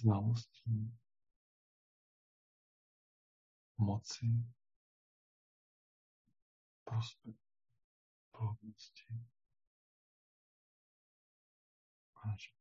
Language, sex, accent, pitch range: Czech, male, American, 105-120 Hz